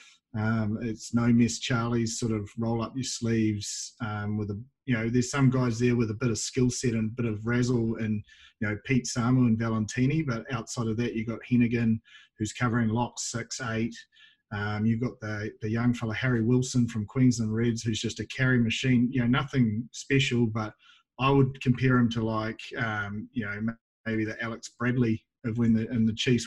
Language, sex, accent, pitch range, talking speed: English, male, Australian, 110-125 Hz, 220 wpm